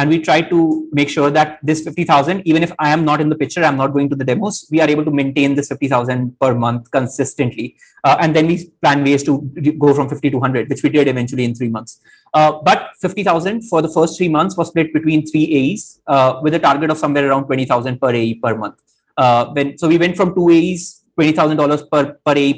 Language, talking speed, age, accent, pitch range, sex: English, 235 wpm, 30-49, Indian, 140-165 Hz, male